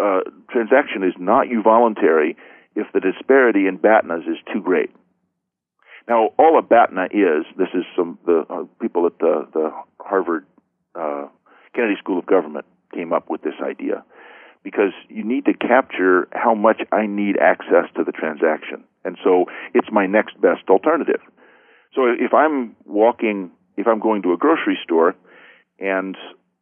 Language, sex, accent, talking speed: English, male, American, 160 wpm